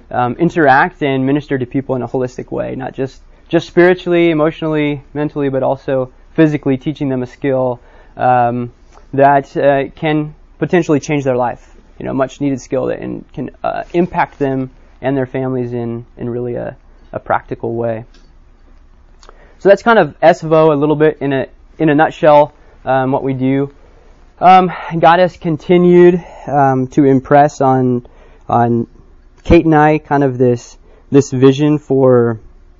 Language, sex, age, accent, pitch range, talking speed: English, male, 20-39, American, 120-150 Hz, 155 wpm